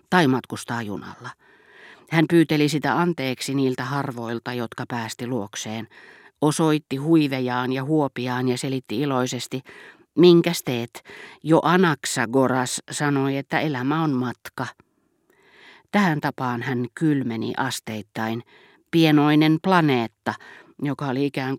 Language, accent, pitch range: Finnish, native, 125-160 Hz